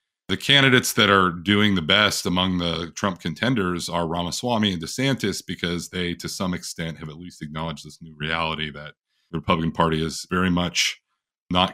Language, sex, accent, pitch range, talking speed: English, male, American, 80-90 Hz, 180 wpm